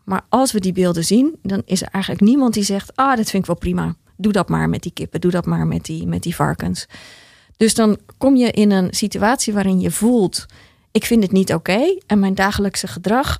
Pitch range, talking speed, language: 180-225 Hz, 230 wpm, Dutch